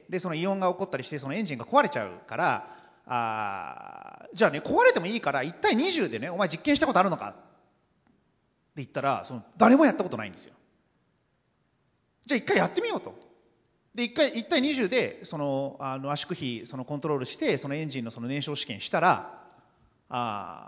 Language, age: Japanese, 40-59